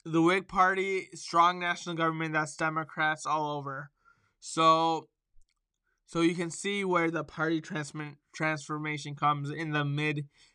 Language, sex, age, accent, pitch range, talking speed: English, male, 20-39, American, 155-180 Hz, 130 wpm